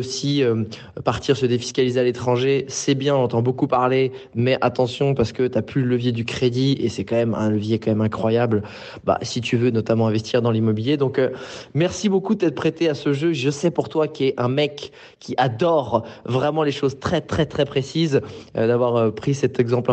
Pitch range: 120-145 Hz